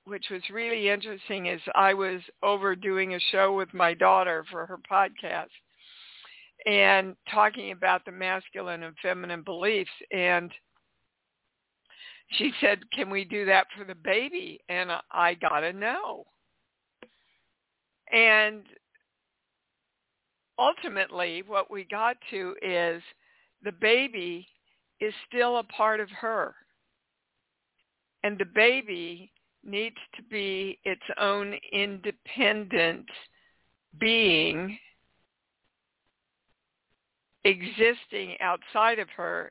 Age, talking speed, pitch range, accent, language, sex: 60-79, 105 wpm, 185-225 Hz, American, English, female